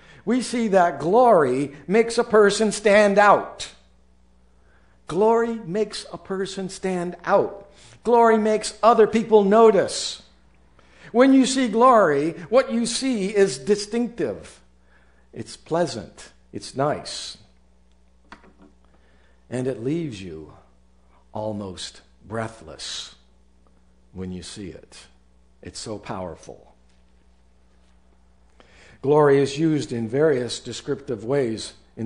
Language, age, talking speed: English, 60-79, 100 wpm